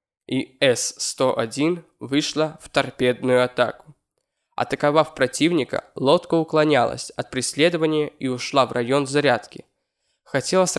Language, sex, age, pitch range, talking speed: Russian, male, 20-39, 130-155 Hz, 100 wpm